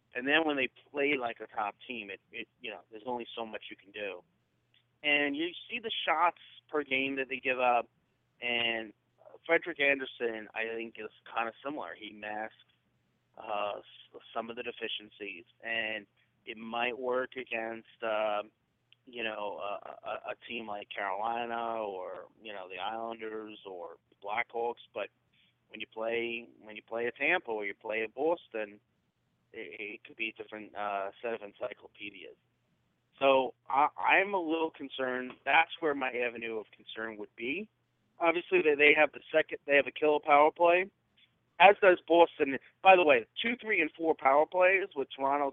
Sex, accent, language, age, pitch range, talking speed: male, American, English, 30-49, 115-140 Hz, 175 wpm